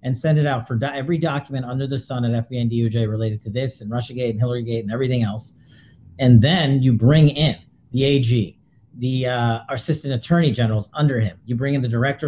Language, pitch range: English, 120-150 Hz